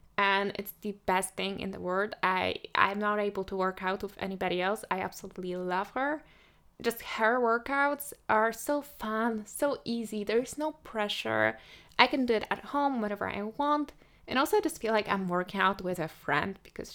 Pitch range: 195-240 Hz